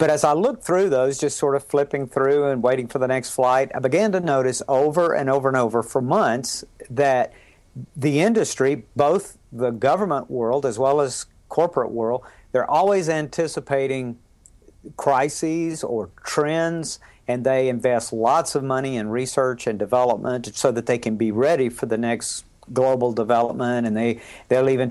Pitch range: 120-145 Hz